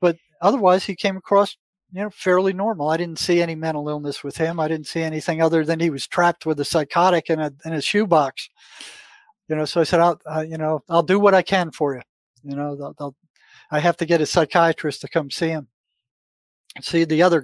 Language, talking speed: English, 235 wpm